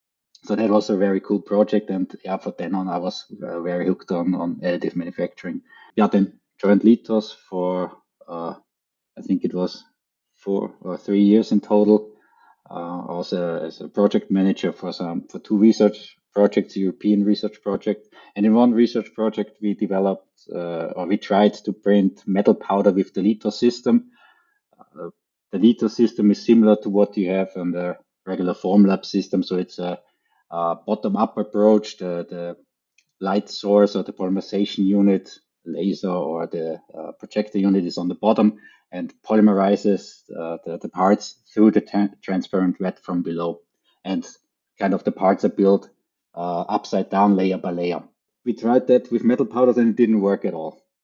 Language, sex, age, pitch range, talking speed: English, male, 20-39, 95-105 Hz, 175 wpm